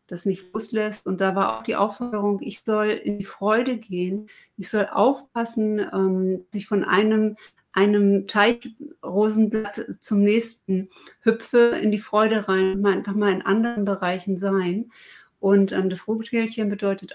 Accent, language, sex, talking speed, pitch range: German, German, female, 145 wpm, 195-220 Hz